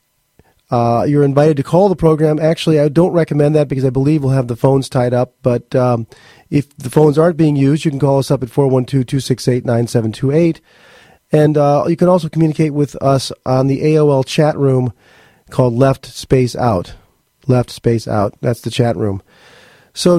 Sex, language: male, English